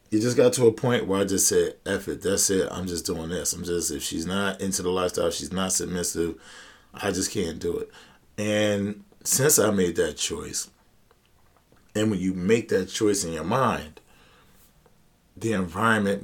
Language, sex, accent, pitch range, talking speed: English, male, American, 90-110 Hz, 190 wpm